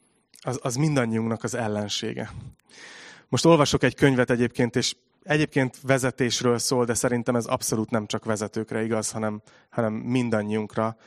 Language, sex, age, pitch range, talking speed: Hungarian, male, 30-49, 110-125 Hz, 135 wpm